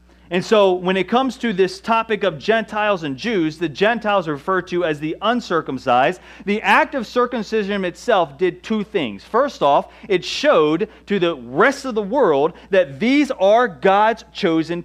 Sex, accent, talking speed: male, American, 175 wpm